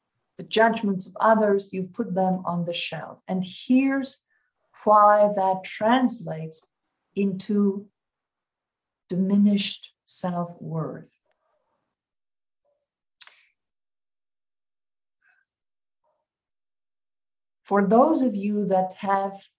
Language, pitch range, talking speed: English, 190-230 Hz, 70 wpm